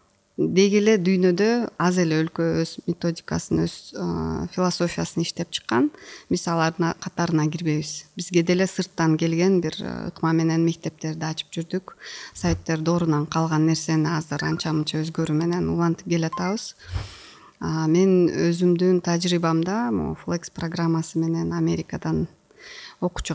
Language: Russian